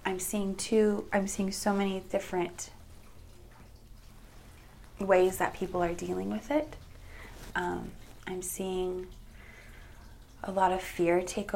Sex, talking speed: female, 120 wpm